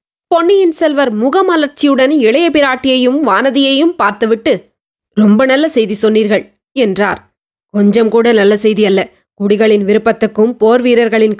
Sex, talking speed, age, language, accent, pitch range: female, 110 wpm, 20-39, Tamil, native, 210-250 Hz